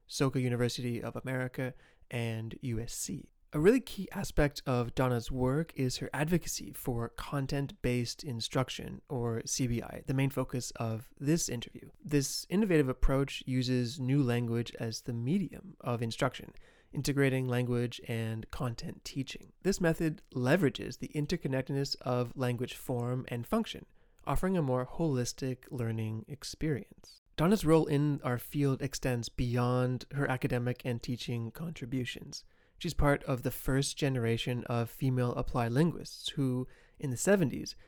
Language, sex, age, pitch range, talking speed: English, male, 30-49, 120-145 Hz, 135 wpm